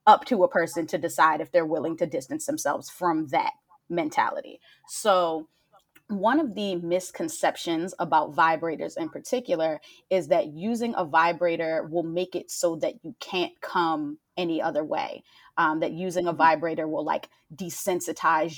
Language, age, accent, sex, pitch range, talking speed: English, 20-39, American, female, 170-225 Hz, 155 wpm